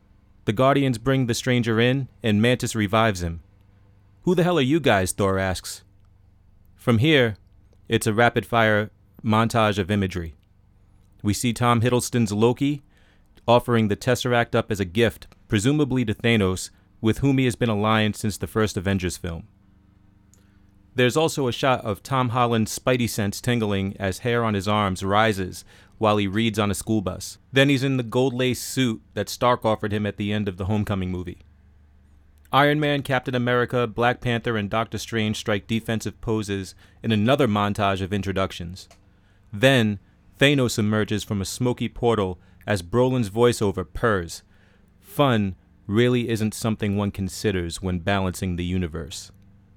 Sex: male